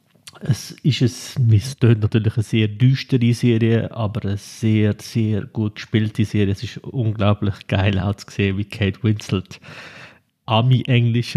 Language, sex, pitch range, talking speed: German, male, 105-125 Hz, 135 wpm